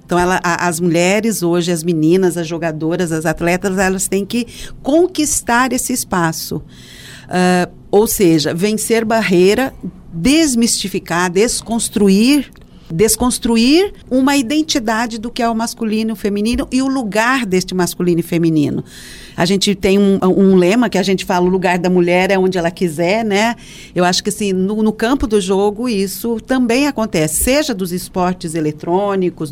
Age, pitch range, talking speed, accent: 50-69, 175-230 Hz, 150 wpm, Brazilian